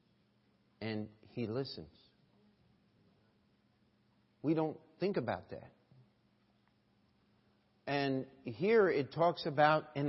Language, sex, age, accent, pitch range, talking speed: English, male, 50-69, American, 120-150 Hz, 85 wpm